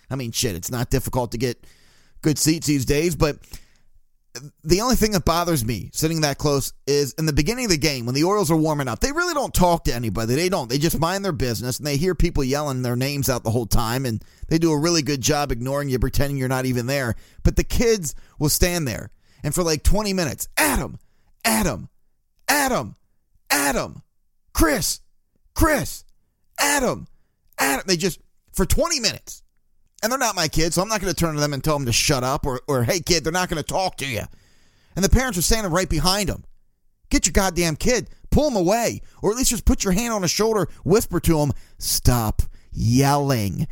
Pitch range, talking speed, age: 125-175 Hz, 215 wpm, 30-49